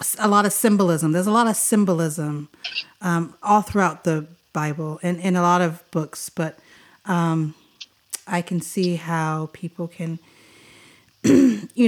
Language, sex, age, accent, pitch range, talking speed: English, female, 30-49, American, 170-215 Hz, 145 wpm